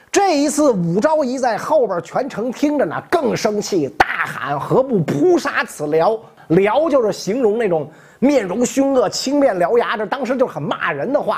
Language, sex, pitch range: Chinese, male, 180-275 Hz